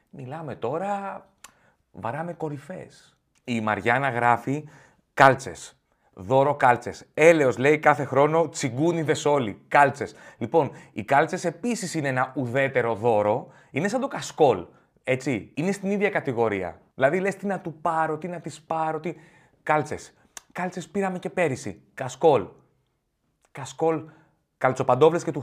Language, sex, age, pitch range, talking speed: Greek, male, 30-49, 115-160 Hz, 130 wpm